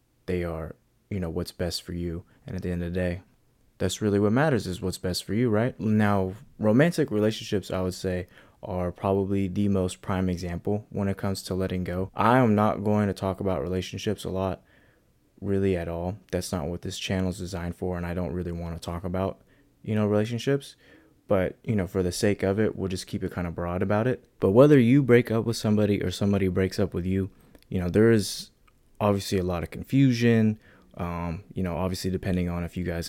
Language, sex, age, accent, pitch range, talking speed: English, male, 20-39, American, 90-105 Hz, 220 wpm